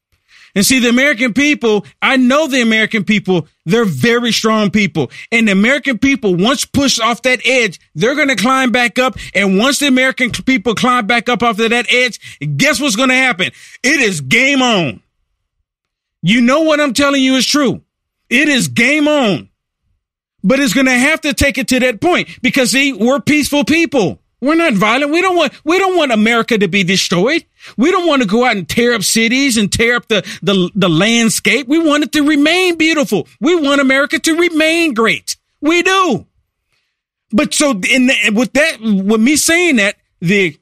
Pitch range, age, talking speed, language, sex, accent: 200-275 Hz, 40-59, 195 wpm, English, male, American